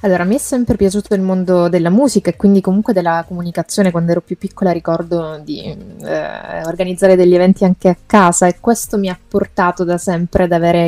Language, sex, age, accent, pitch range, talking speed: Italian, female, 20-39, native, 170-200 Hz, 205 wpm